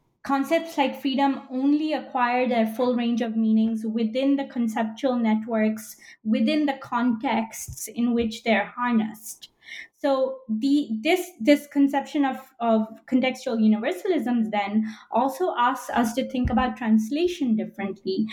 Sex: female